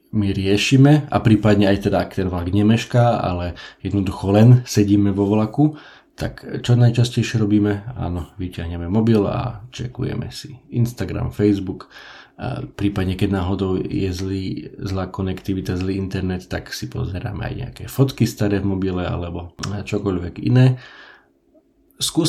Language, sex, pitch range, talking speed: Slovak, male, 95-120 Hz, 135 wpm